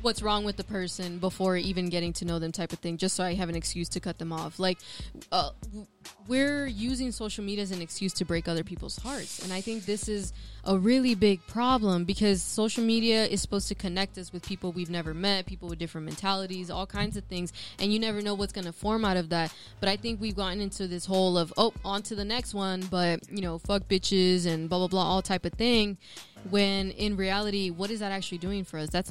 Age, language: 10-29, English